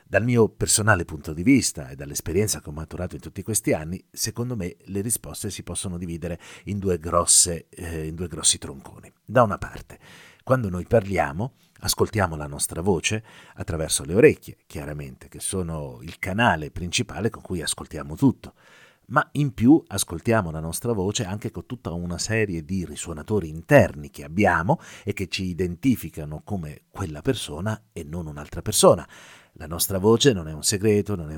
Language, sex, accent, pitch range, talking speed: Italian, male, native, 85-110 Hz, 165 wpm